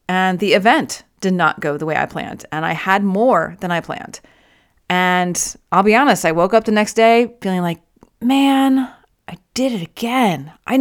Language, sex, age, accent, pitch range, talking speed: English, female, 30-49, American, 190-260 Hz, 195 wpm